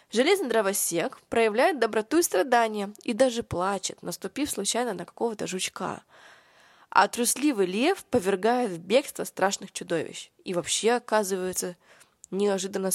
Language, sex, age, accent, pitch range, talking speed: Russian, female, 20-39, native, 180-245 Hz, 120 wpm